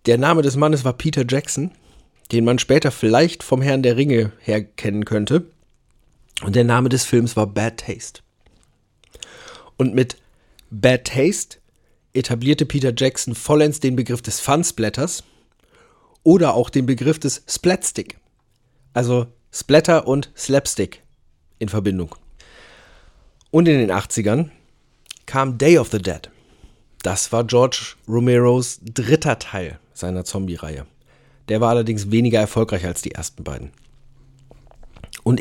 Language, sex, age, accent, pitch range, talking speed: German, male, 40-59, German, 110-135 Hz, 130 wpm